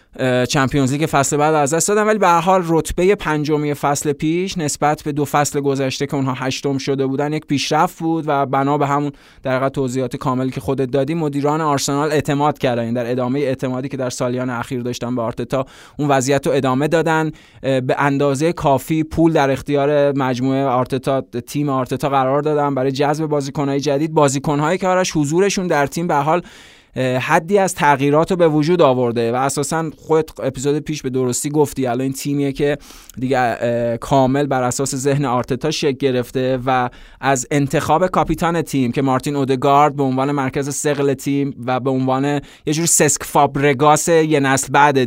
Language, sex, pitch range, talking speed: Persian, male, 130-150 Hz, 170 wpm